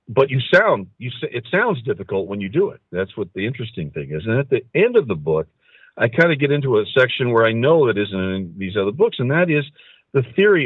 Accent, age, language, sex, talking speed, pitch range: American, 50-69, English, male, 260 wpm, 105-150 Hz